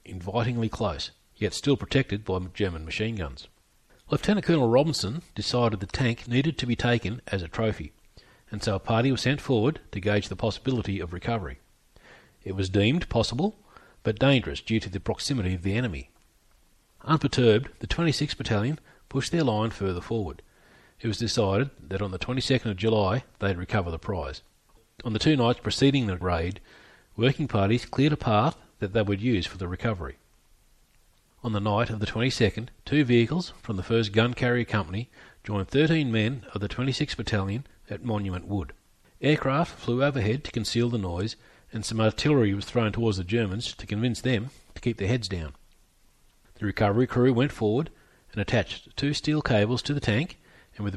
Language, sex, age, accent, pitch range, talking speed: English, male, 40-59, Australian, 100-125 Hz, 180 wpm